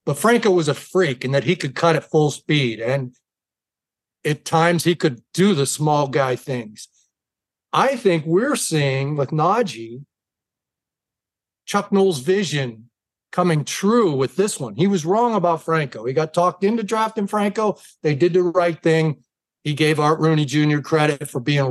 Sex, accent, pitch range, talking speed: male, American, 140-185 Hz, 170 wpm